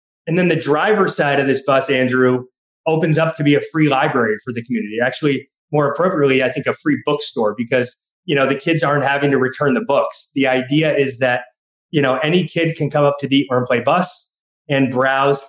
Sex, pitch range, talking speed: male, 130-155 Hz, 215 wpm